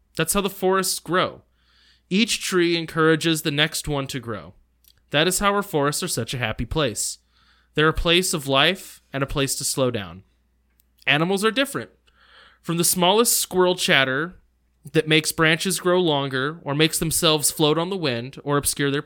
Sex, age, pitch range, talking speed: male, 20-39, 130-180 Hz, 180 wpm